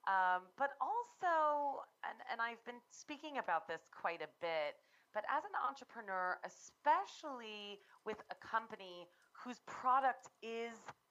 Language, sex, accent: English, female, American